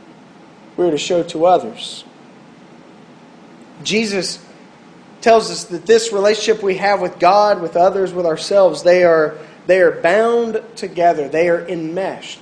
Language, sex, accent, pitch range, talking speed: English, male, American, 170-225 Hz, 135 wpm